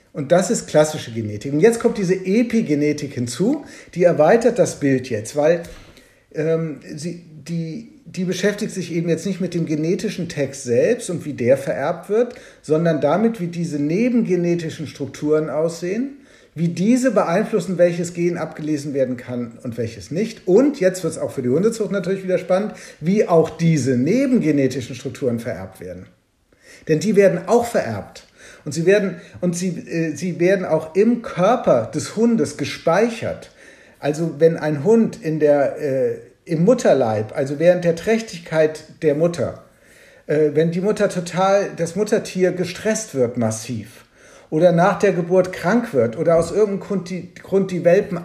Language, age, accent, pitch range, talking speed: German, 50-69, German, 150-200 Hz, 150 wpm